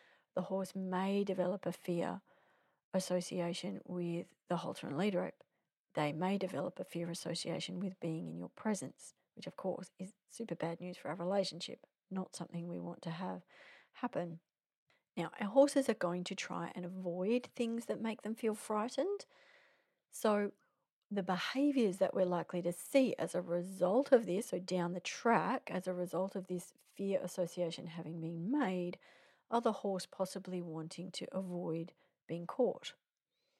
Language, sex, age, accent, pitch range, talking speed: English, female, 40-59, Australian, 175-200 Hz, 160 wpm